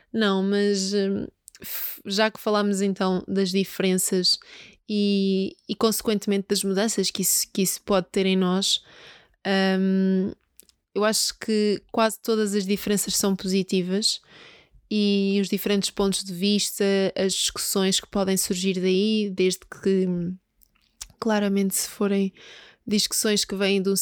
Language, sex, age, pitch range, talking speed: Portuguese, female, 20-39, 195-220 Hz, 130 wpm